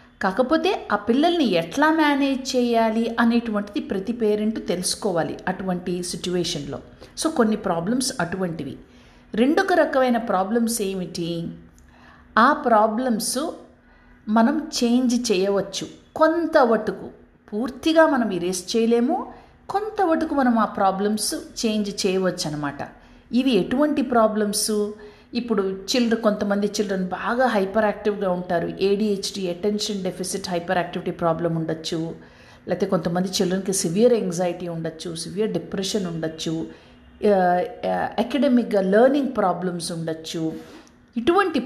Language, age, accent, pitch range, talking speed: Telugu, 50-69, native, 180-245 Hz, 100 wpm